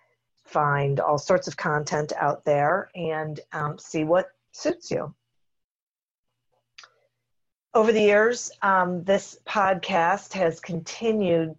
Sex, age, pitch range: female, 50-69, 150-185 Hz